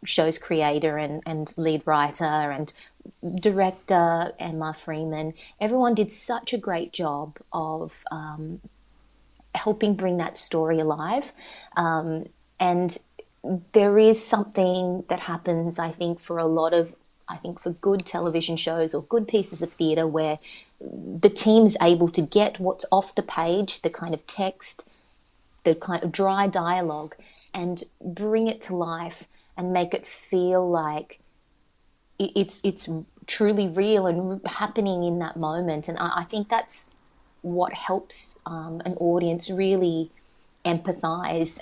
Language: English